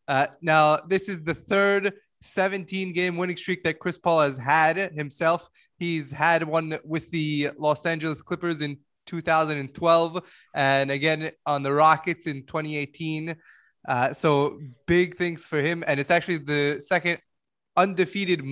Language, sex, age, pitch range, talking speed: English, male, 20-39, 145-170 Hz, 145 wpm